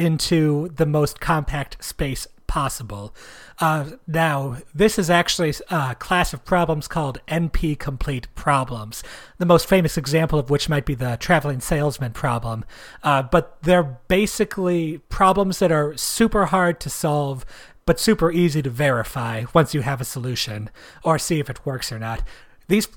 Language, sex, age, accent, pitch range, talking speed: English, male, 40-59, American, 135-165 Hz, 155 wpm